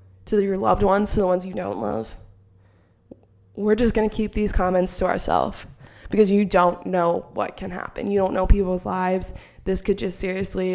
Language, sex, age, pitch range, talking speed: English, female, 20-39, 180-205 Hz, 195 wpm